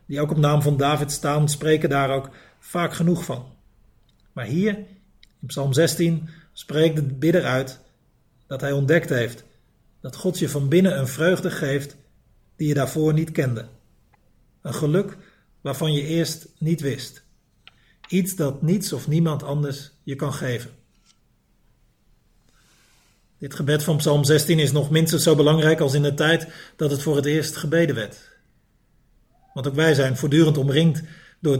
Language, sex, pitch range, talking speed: Dutch, male, 135-160 Hz, 160 wpm